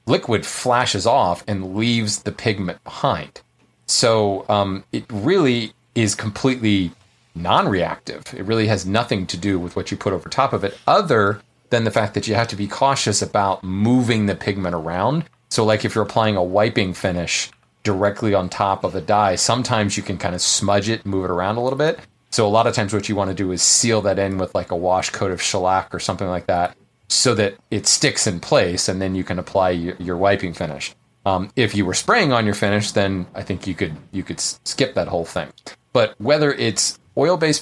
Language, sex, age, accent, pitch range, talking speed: English, male, 30-49, American, 95-125 Hz, 210 wpm